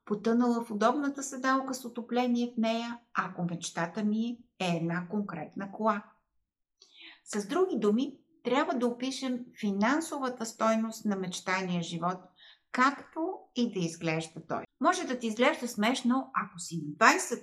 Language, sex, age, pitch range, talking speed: Bulgarian, female, 50-69, 200-255 Hz, 140 wpm